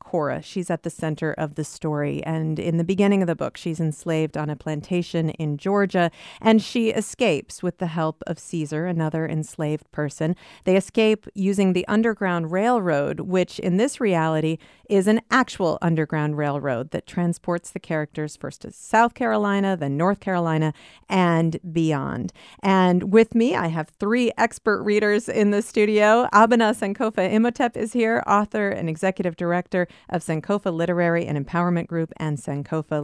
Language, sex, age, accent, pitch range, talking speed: English, female, 40-59, American, 160-205 Hz, 160 wpm